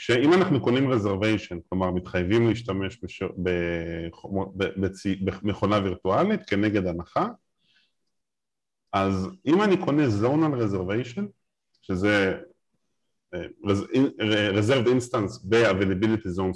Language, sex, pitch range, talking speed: Hebrew, male, 95-150 Hz, 85 wpm